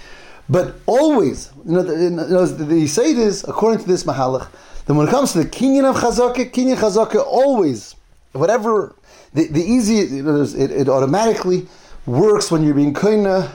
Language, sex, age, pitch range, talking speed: English, male, 30-49, 140-195 Hz, 165 wpm